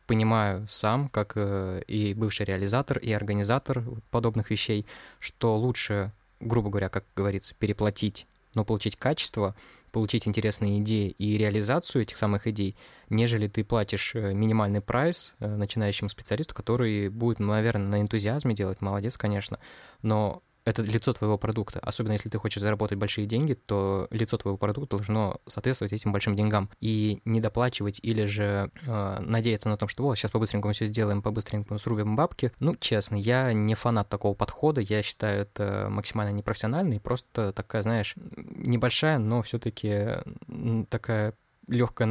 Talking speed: 150 wpm